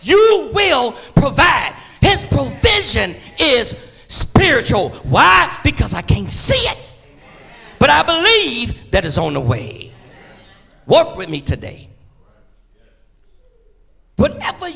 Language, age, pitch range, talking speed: English, 40-59, 225-310 Hz, 105 wpm